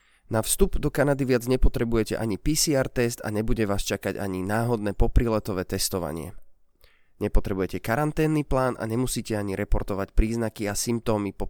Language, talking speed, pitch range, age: Slovak, 145 wpm, 95-120 Hz, 20-39